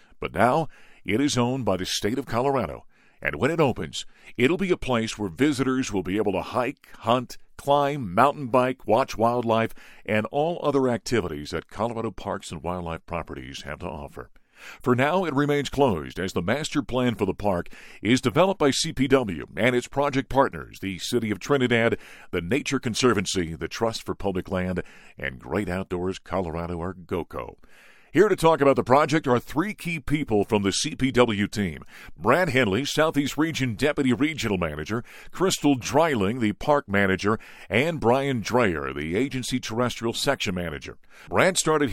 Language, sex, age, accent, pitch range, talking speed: English, male, 50-69, American, 95-140 Hz, 170 wpm